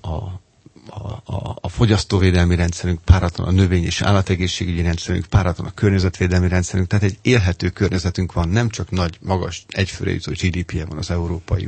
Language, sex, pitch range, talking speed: Hungarian, male, 90-105 Hz, 165 wpm